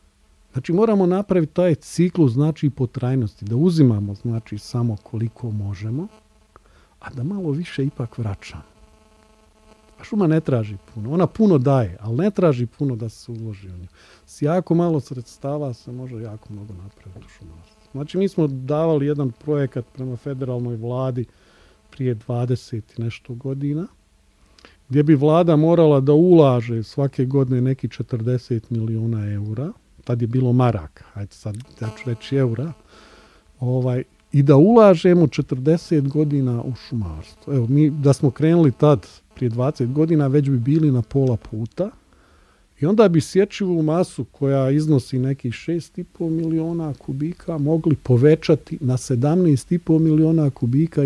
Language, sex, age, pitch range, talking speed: English, male, 40-59, 115-155 Hz, 140 wpm